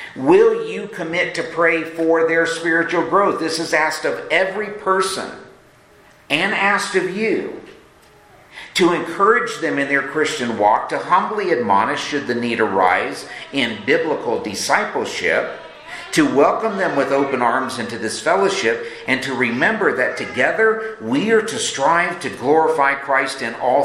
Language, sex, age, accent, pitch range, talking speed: English, male, 50-69, American, 120-195 Hz, 150 wpm